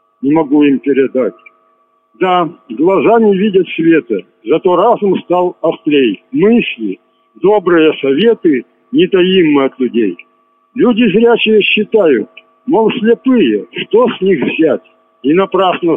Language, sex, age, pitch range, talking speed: Russian, male, 60-79, 165-235 Hz, 120 wpm